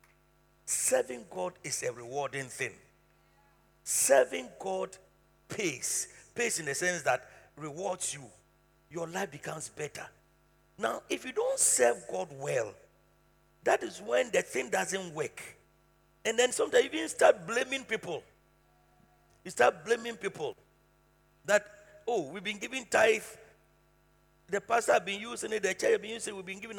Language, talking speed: English, 150 wpm